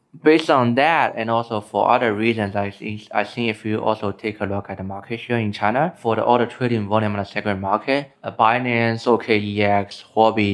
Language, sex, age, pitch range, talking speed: English, male, 20-39, 100-120 Hz, 205 wpm